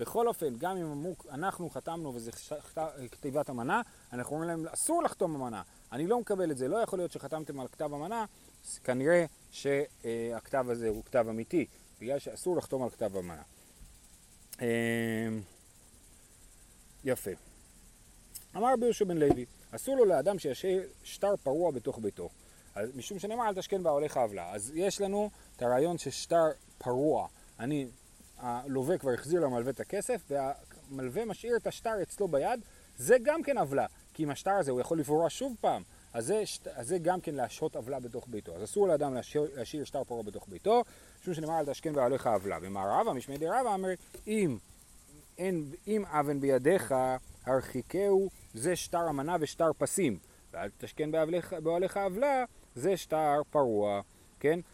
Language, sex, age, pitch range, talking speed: Hebrew, male, 30-49, 125-190 Hz, 155 wpm